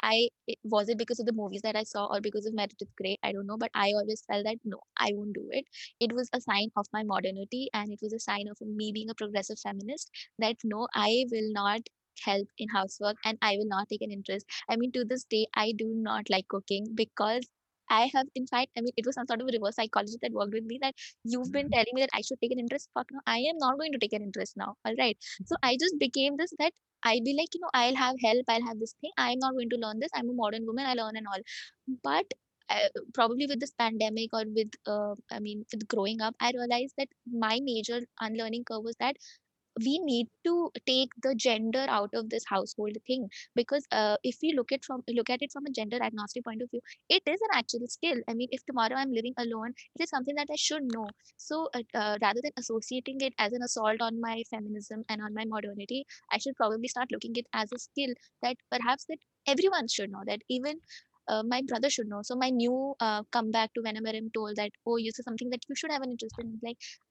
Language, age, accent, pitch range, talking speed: English, 20-39, Indian, 215-255 Hz, 245 wpm